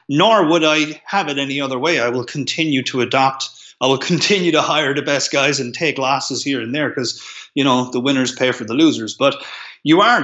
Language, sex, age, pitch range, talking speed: English, male, 30-49, 125-150 Hz, 230 wpm